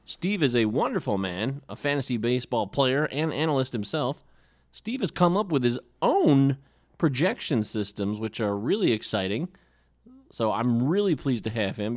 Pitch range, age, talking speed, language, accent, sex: 110-145 Hz, 30-49, 160 wpm, English, American, male